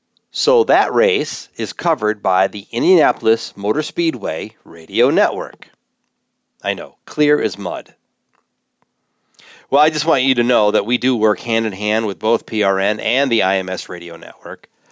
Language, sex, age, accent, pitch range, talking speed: English, male, 40-59, American, 105-145 Hz, 150 wpm